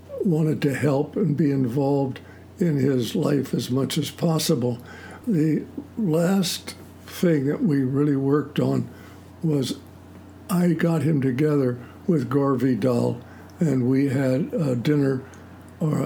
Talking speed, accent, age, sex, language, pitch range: 130 wpm, American, 60-79, male, English, 120-155 Hz